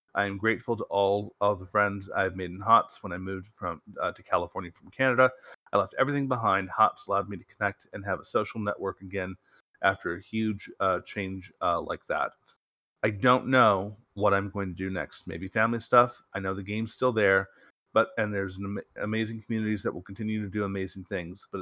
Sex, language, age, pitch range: male, English, 30-49, 95-115 Hz